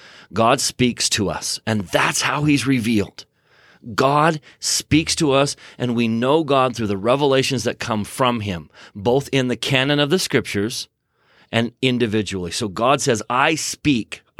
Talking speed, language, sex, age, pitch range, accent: 160 wpm, English, male, 30-49, 105-140 Hz, American